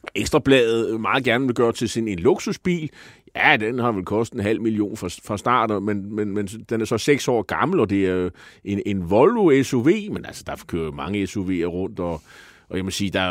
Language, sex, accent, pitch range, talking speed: Danish, male, native, 110-155 Hz, 215 wpm